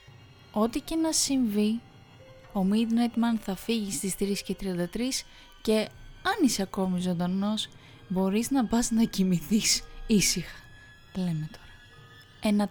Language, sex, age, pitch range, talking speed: Greek, female, 20-39, 185-225 Hz, 125 wpm